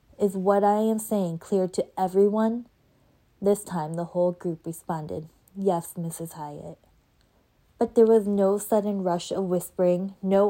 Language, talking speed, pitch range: English, 150 wpm, 175-205 Hz